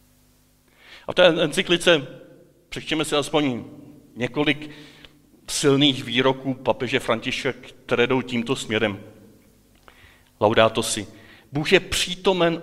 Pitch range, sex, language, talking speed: 125-165 Hz, male, Czech, 105 wpm